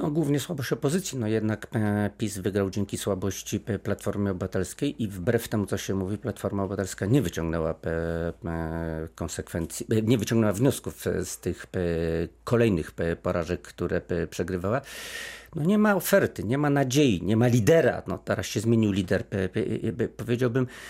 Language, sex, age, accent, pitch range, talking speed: Polish, male, 50-69, native, 95-135 Hz, 140 wpm